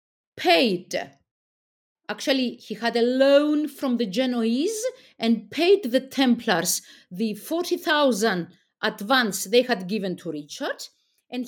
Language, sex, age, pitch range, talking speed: English, female, 50-69, 210-295 Hz, 115 wpm